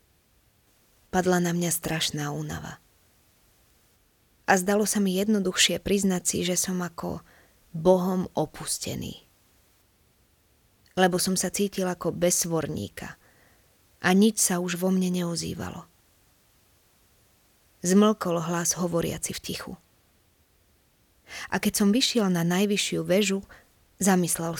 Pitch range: 140-190 Hz